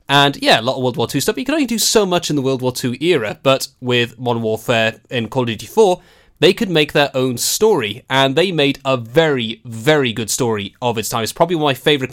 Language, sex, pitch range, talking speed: English, male, 125-170 Hz, 260 wpm